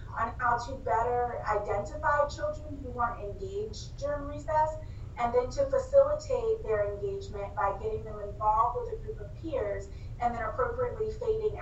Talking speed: 160 wpm